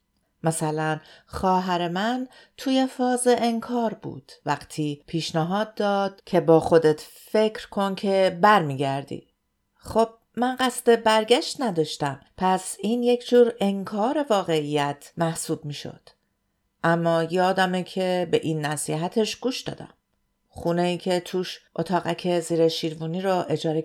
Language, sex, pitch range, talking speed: Persian, female, 170-225 Hz, 120 wpm